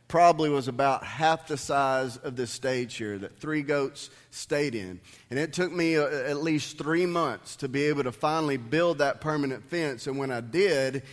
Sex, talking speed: male, 195 wpm